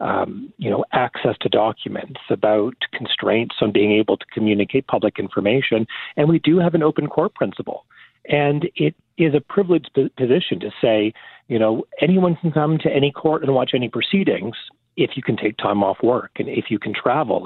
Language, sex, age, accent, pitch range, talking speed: English, male, 40-59, American, 115-150 Hz, 190 wpm